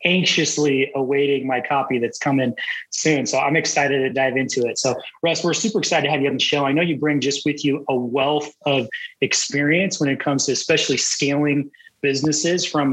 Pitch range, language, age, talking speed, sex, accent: 140-160 Hz, English, 30-49, 205 wpm, male, American